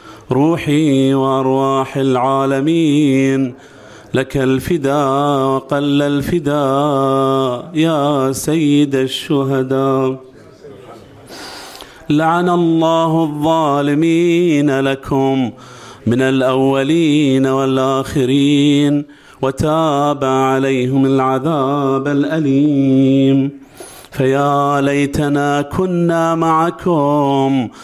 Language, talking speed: Arabic, 55 wpm